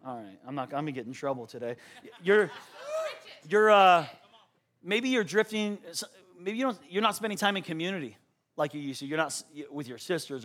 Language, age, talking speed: English, 30-49, 195 wpm